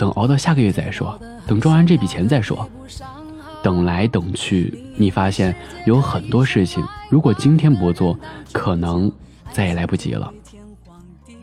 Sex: male